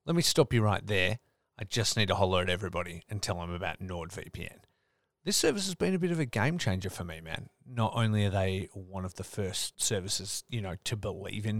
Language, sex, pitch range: English, male, 95-125 Hz